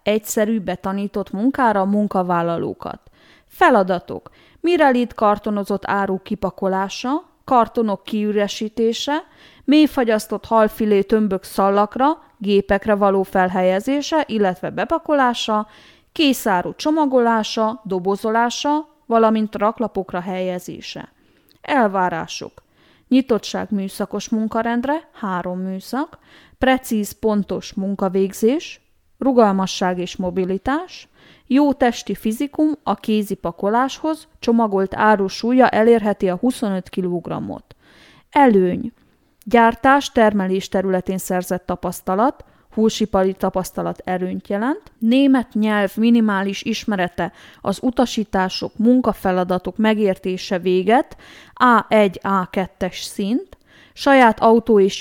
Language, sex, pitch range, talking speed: Hungarian, female, 190-240 Hz, 80 wpm